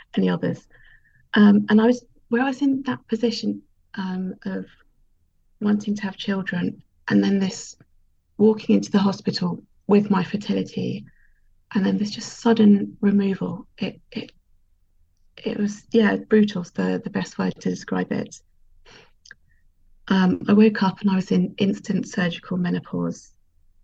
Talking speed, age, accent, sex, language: 150 wpm, 30-49, British, female, English